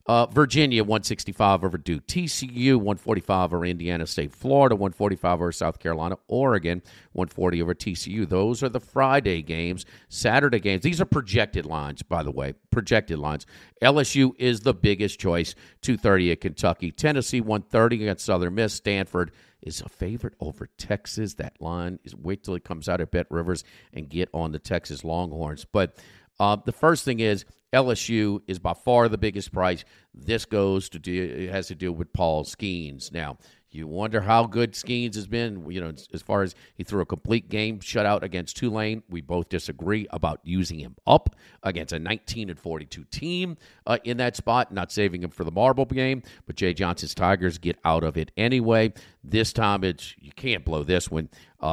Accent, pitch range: American, 85-115 Hz